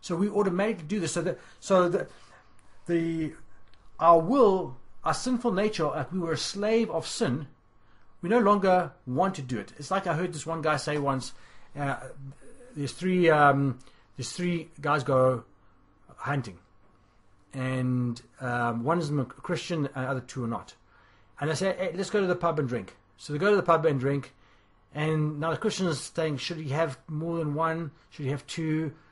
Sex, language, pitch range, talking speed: male, English, 125-170 Hz, 195 wpm